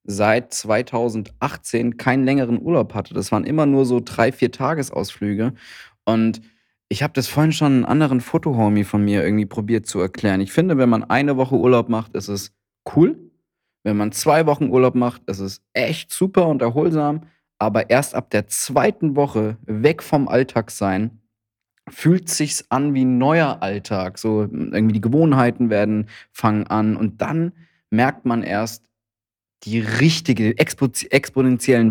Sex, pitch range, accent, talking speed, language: male, 105-135 Hz, German, 160 wpm, German